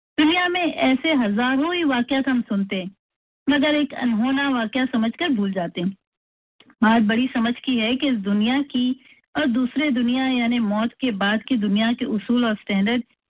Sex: female